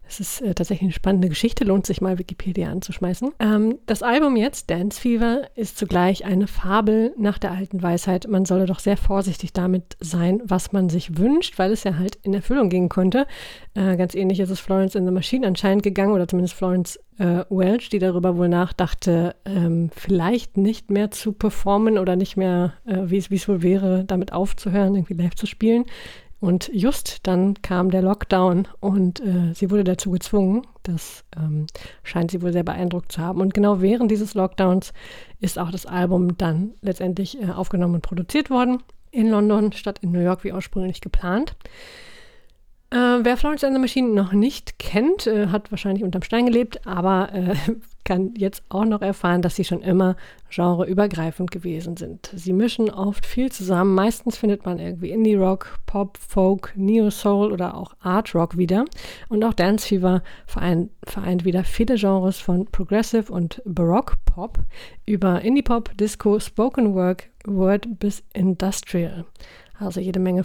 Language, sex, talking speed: German, female, 170 wpm